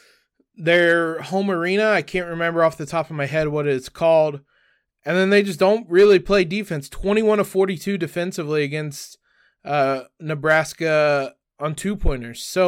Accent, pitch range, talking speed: American, 160-205 Hz, 155 wpm